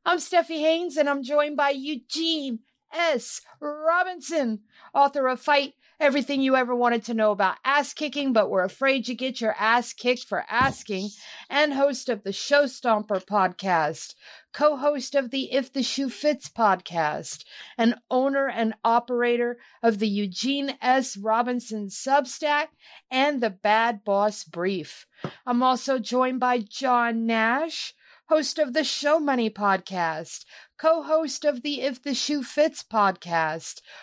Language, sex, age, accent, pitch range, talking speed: English, female, 50-69, American, 225-285 Hz, 145 wpm